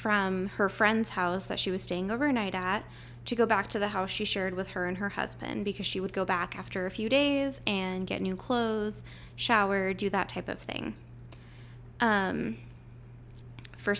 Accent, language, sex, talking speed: American, English, female, 190 wpm